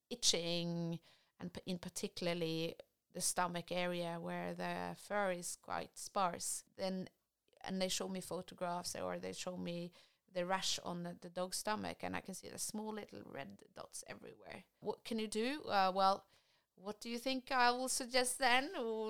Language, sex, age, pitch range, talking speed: English, female, 30-49, 170-215 Hz, 175 wpm